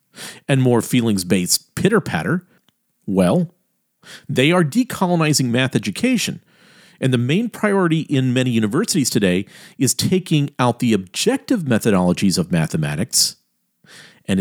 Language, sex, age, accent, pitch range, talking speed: English, male, 50-69, American, 120-180 Hz, 110 wpm